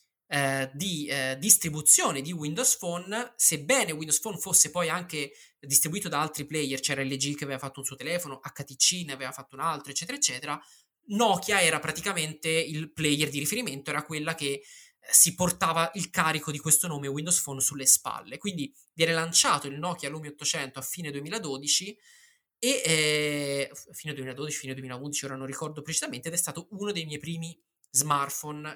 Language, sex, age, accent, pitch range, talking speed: Italian, male, 20-39, native, 140-170 Hz, 180 wpm